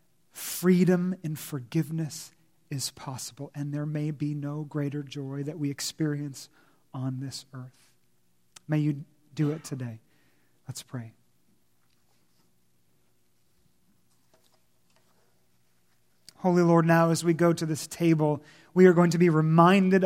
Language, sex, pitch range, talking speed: English, male, 145-180 Hz, 120 wpm